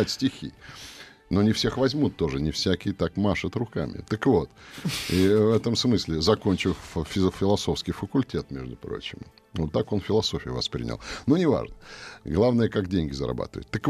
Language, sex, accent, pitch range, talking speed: Russian, male, native, 85-110 Hz, 145 wpm